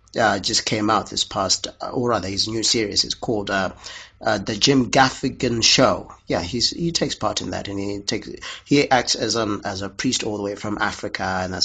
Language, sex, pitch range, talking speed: English, male, 100-145 Hz, 225 wpm